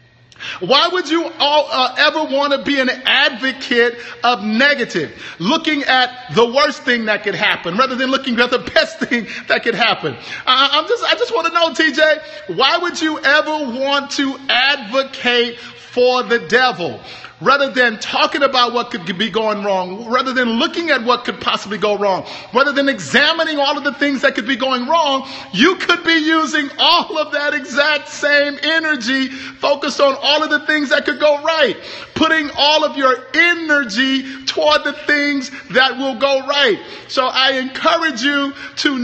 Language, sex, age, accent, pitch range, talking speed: English, male, 50-69, American, 235-295 Hz, 180 wpm